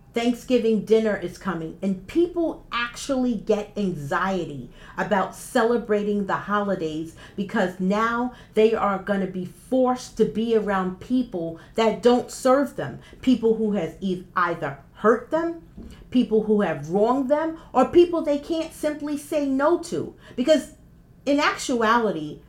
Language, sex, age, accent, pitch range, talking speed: English, female, 40-59, American, 185-255 Hz, 135 wpm